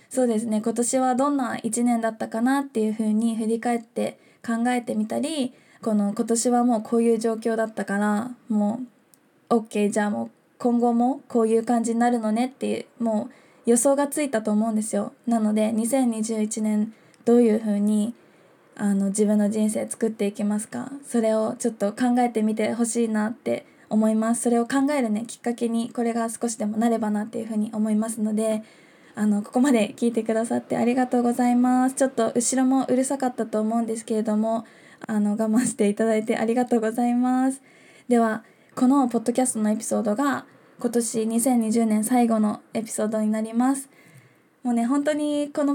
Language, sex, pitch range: Japanese, female, 215-250 Hz